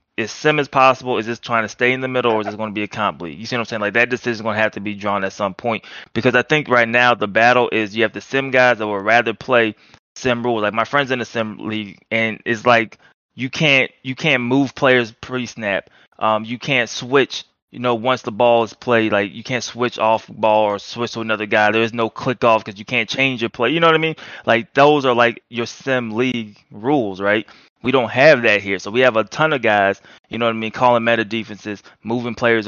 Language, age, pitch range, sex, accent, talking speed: English, 20-39, 105-125 Hz, male, American, 265 wpm